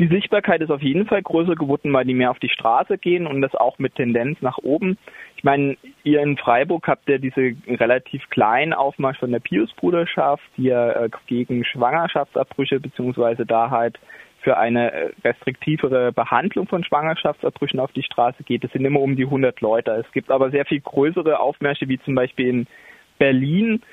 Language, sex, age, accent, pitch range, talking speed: German, male, 20-39, German, 125-150 Hz, 180 wpm